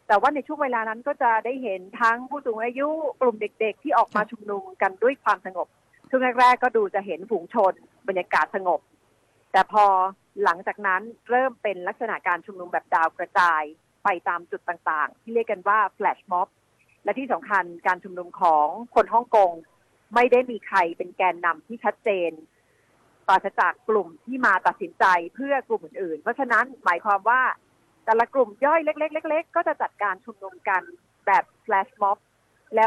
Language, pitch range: Thai, 185-240 Hz